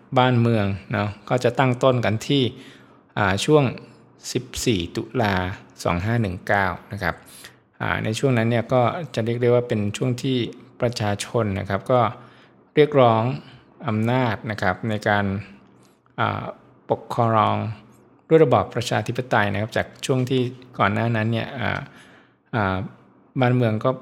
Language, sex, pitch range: Thai, male, 100-125 Hz